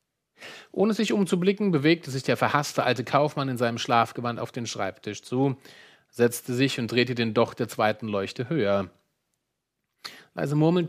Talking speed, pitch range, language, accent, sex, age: 155 wpm, 115-165 Hz, German, German, male, 40-59